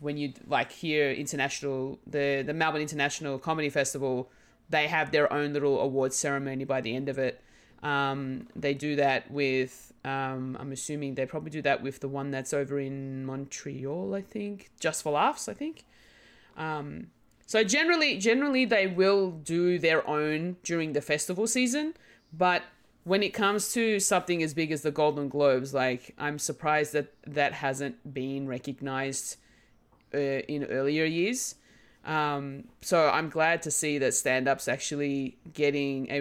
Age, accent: 20-39, Australian